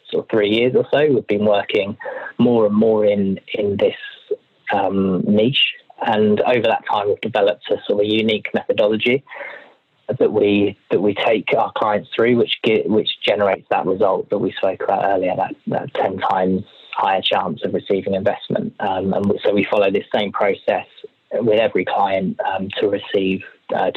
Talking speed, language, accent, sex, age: 180 wpm, English, British, male, 20-39